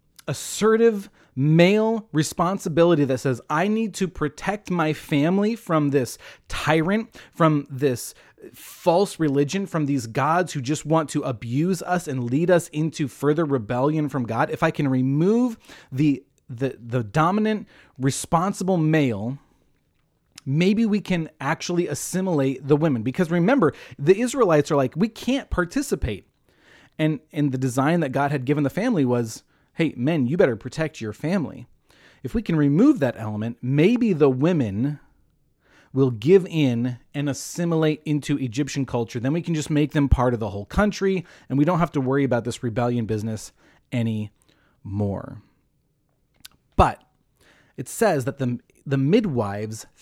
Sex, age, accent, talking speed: male, 30-49, American, 150 wpm